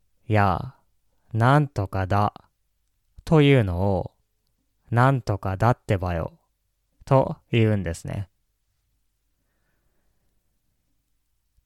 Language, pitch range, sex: Japanese, 95-130 Hz, male